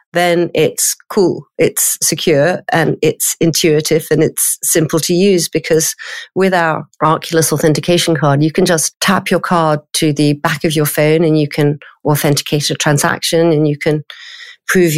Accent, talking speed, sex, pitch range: British, 165 wpm, female, 155-175 Hz